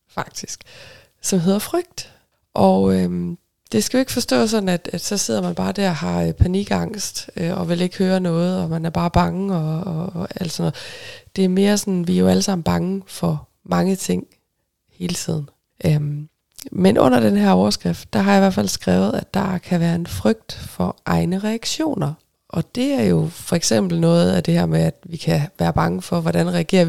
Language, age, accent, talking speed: Danish, 20-39, native, 215 wpm